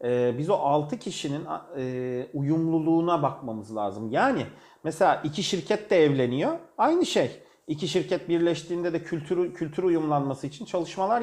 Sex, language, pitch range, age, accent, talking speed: male, Turkish, 125-170 Hz, 40-59, native, 130 wpm